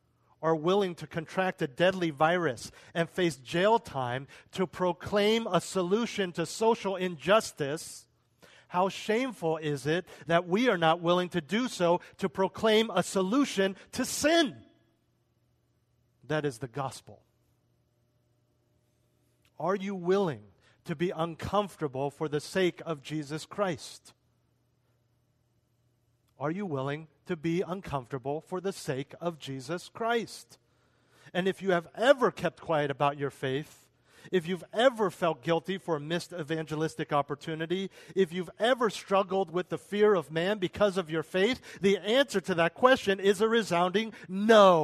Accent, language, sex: American, English, male